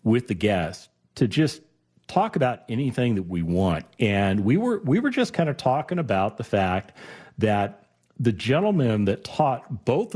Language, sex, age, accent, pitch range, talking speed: English, male, 40-59, American, 90-125 Hz, 170 wpm